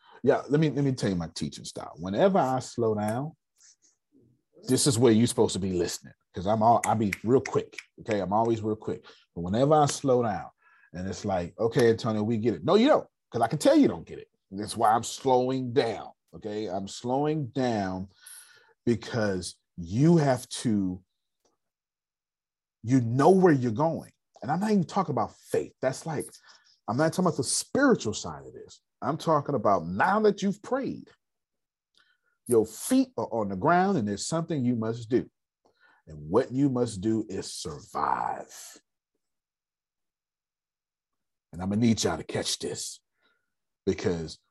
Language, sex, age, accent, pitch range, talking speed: English, male, 30-49, American, 100-150 Hz, 175 wpm